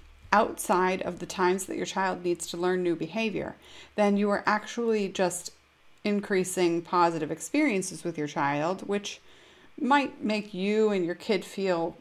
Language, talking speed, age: English, 155 wpm, 30-49